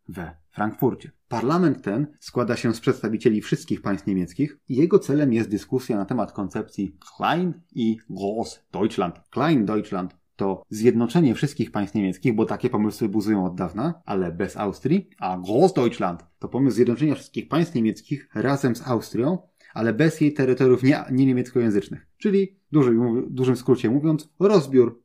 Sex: male